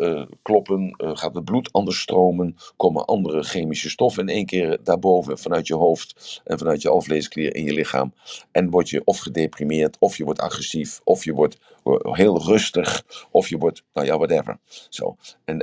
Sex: male